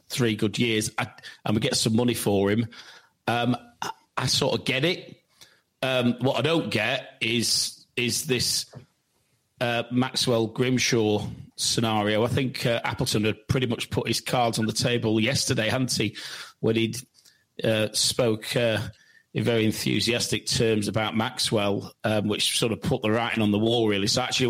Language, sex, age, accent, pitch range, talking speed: English, male, 40-59, British, 110-130 Hz, 170 wpm